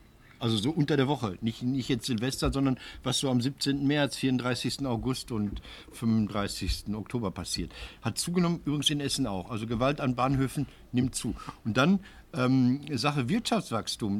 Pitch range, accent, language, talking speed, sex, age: 110-145 Hz, German, German, 160 wpm, male, 60-79